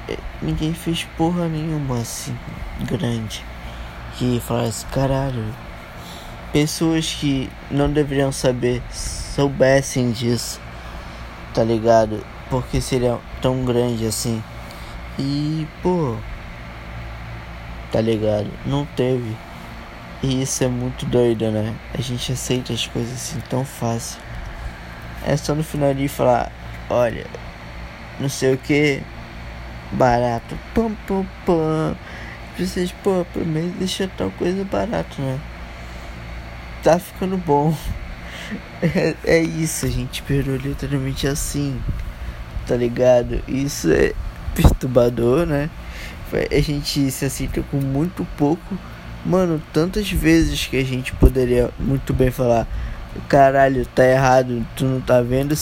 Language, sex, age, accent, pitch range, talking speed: Portuguese, male, 20-39, Brazilian, 115-145 Hz, 115 wpm